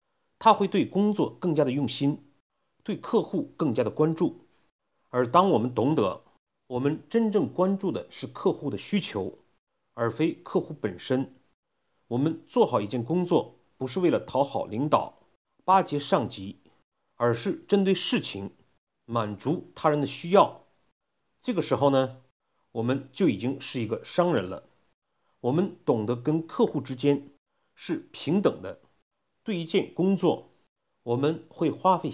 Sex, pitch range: male, 130-180 Hz